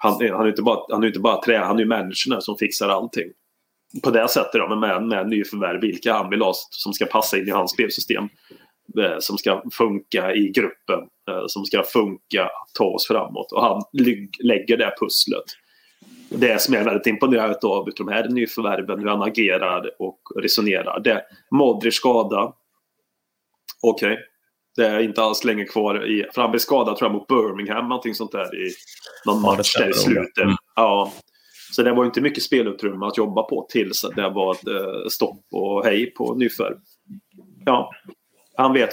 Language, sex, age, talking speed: Swedish, male, 30-49, 180 wpm